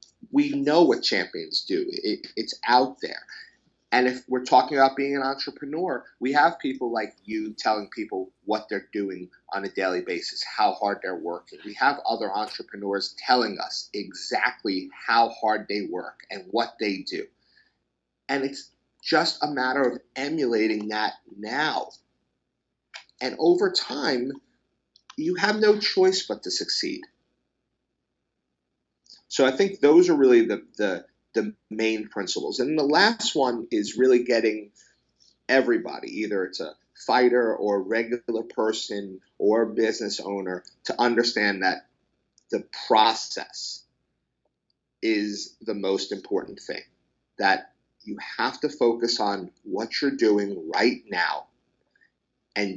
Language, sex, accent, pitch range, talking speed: English, male, American, 105-150 Hz, 140 wpm